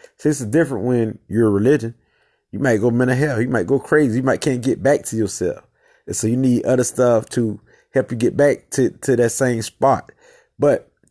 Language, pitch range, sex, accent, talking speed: English, 110-140 Hz, male, American, 215 wpm